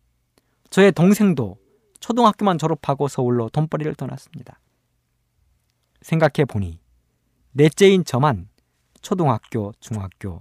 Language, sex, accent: Korean, male, native